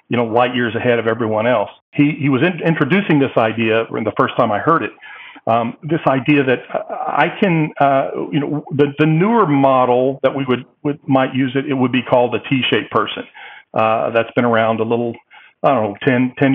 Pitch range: 115-140 Hz